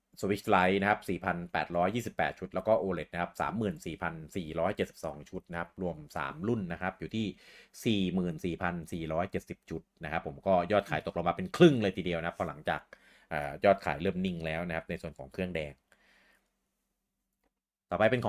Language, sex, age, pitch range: Thai, male, 30-49, 85-105 Hz